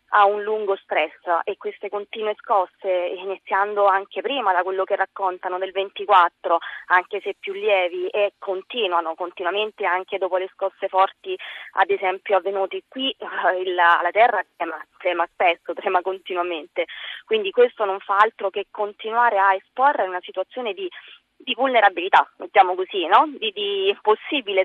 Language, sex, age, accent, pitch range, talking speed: Italian, female, 20-39, native, 190-220 Hz, 150 wpm